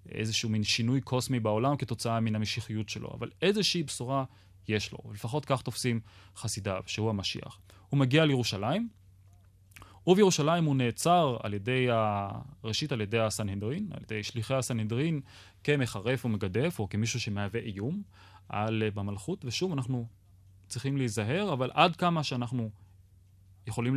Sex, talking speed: male, 130 wpm